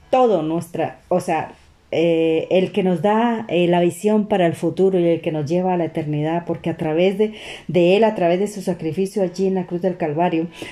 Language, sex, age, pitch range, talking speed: Spanish, female, 40-59, 170-200 Hz, 225 wpm